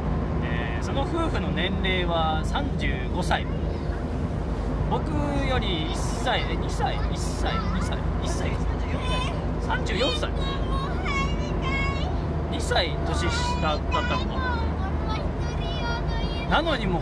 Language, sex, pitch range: Japanese, male, 75-85 Hz